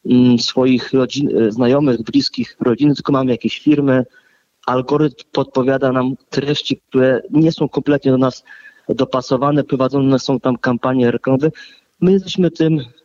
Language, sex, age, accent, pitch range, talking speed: Polish, male, 30-49, native, 130-160 Hz, 125 wpm